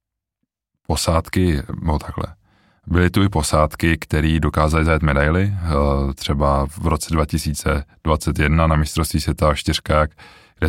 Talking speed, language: 110 wpm, Czech